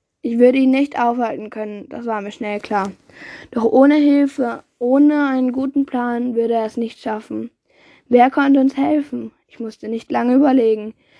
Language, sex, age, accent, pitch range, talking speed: German, female, 10-29, German, 230-275 Hz, 170 wpm